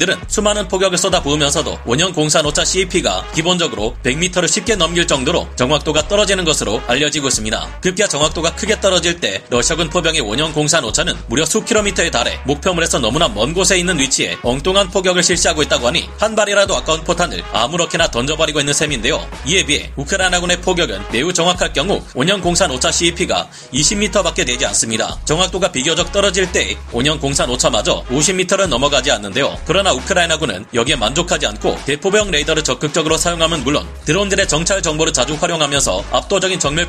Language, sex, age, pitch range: Korean, male, 30-49, 150-190 Hz